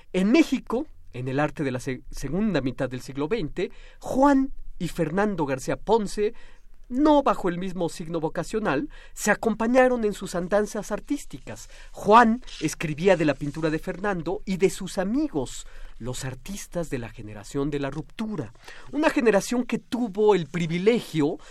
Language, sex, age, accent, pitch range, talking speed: Spanish, male, 40-59, Mexican, 140-215 Hz, 150 wpm